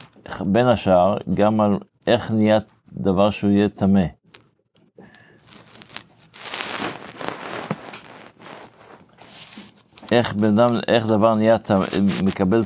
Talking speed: 75 wpm